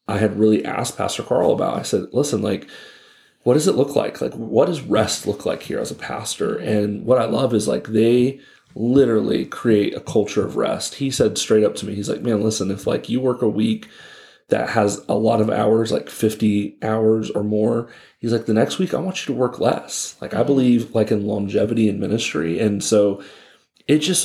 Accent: American